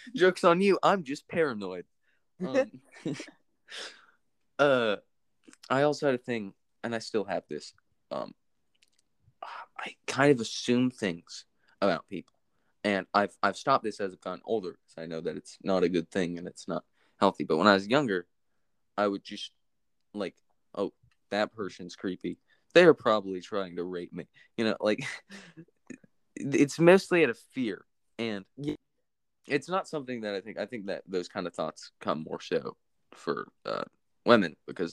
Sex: male